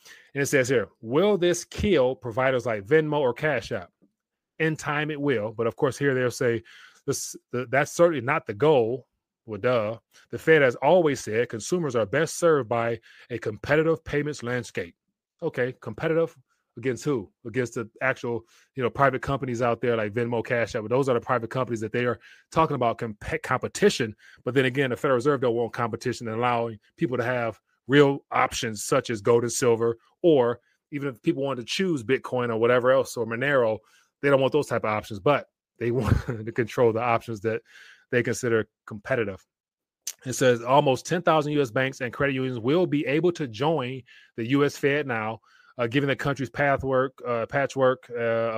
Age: 30-49